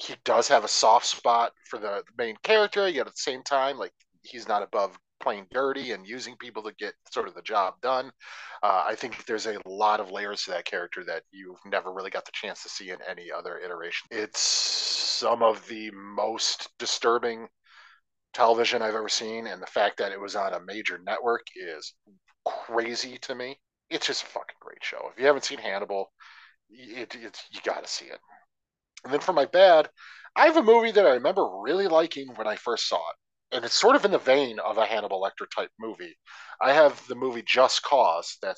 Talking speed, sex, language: 210 wpm, male, English